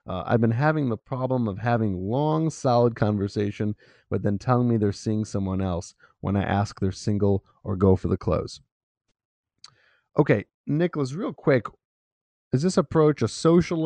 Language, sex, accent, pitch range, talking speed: English, male, American, 100-130 Hz, 165 wpm